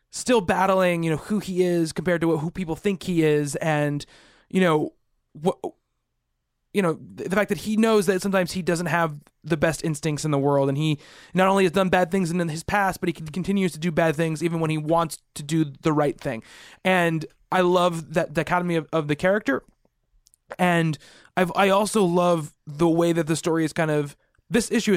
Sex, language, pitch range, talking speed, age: male, English, 155-185 Hz, 215 wpm, 20-39